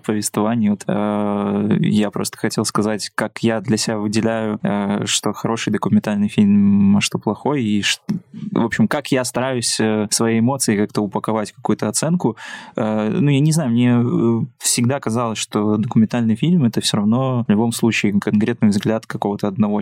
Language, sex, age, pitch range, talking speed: Russian, male, 20-39, 105-130 Hz, 165 wpm